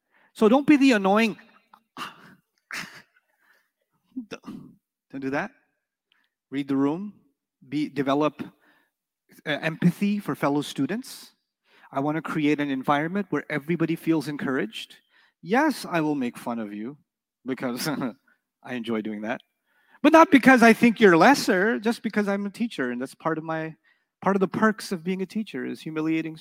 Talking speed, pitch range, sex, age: 150 wpm, 160-250 Hz, male, 30-49